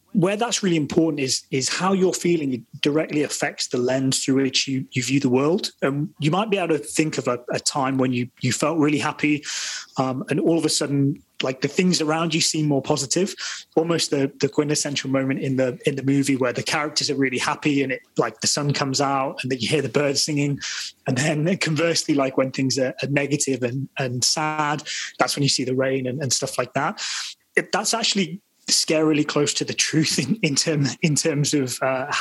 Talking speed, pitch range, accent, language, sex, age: 225 wpm, 135-160 Hz, British, English, male, 20-39